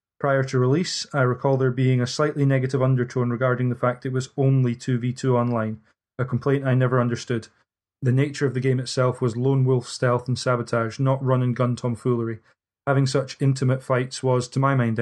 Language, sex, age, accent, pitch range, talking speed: English, male, 20-39, British, 120-130 Hz, 190 wpm